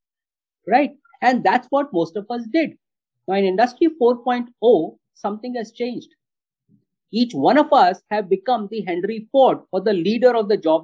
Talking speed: 165 wpm